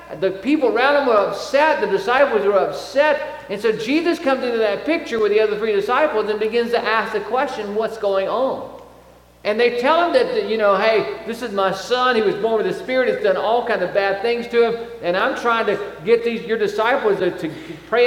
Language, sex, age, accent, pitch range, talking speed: English, male, 50-69, American, 205-305 Hz, 235 wpm